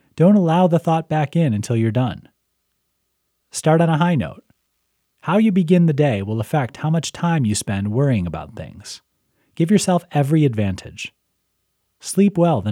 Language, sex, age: English, male, 30-49